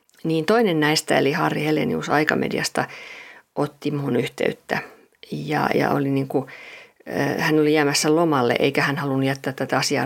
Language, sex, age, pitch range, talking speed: Finnish, female, 50-69, 145-175 Hz, 155 wpm